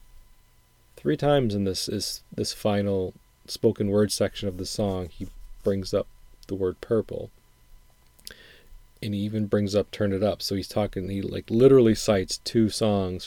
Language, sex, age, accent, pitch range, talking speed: English, male, 30-49, American, 90-105 Hz, 165 wpm